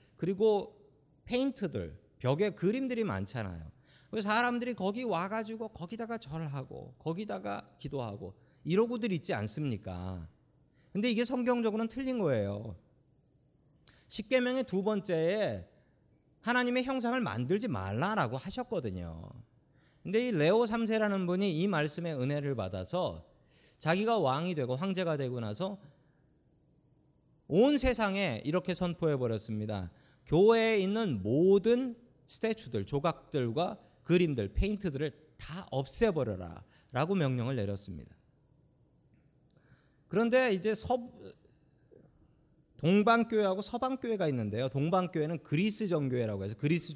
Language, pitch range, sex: Korean, 130-215 Hz, male